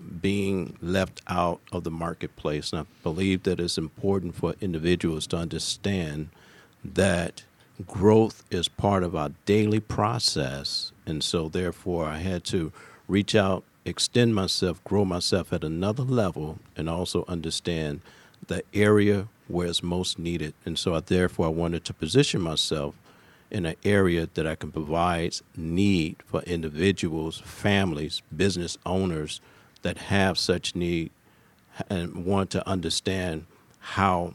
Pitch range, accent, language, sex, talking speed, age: 85-100 Hz, American, English, male, 135 wpm, 50-69